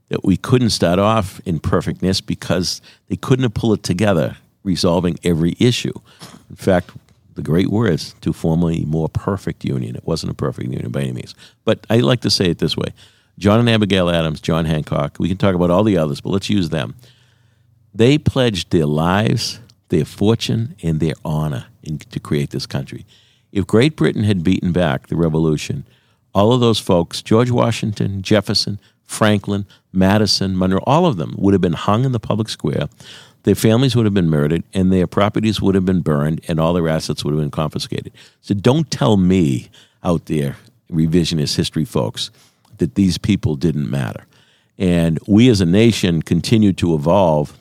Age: 60-79